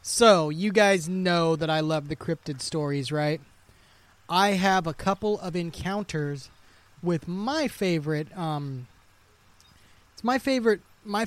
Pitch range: 135-200 Hz